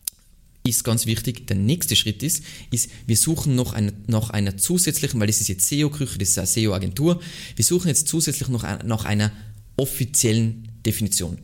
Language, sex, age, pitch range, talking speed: German, male, 20-39, 100-125 Hz, 190 wpm